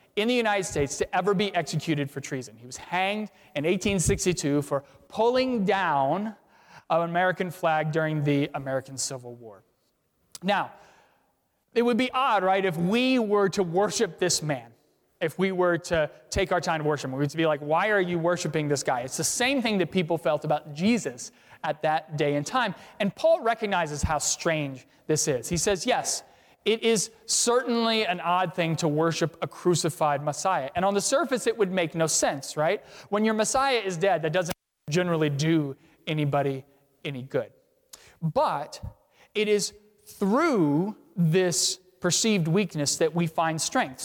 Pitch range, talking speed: 155-210 Hz, 170 wpm